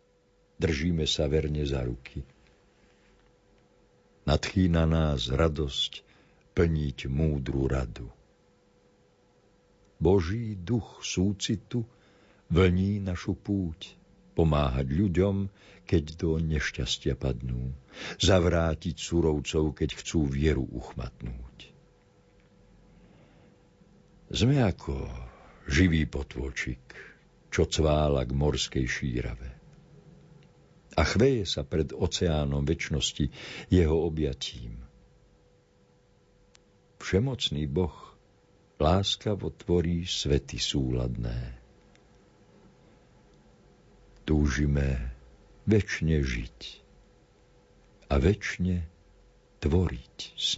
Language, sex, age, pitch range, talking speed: Slovak, male, 60-79, 70-95 Hz, 70 wpm